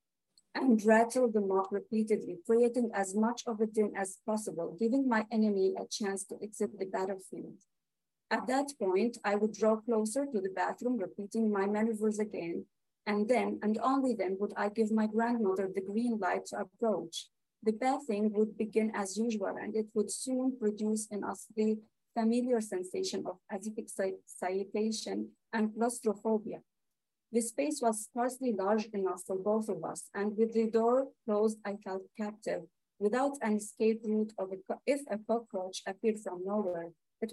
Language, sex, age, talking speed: English, female, 30-49, 165 wpm